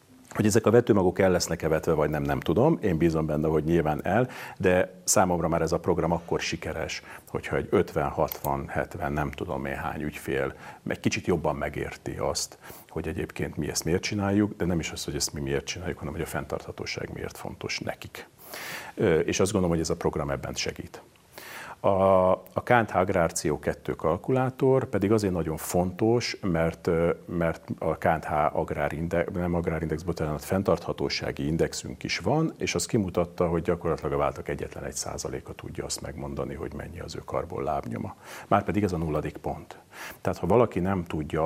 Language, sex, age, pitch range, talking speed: Hungarian, male, 50-69, 80-100 Hz, 175 wpm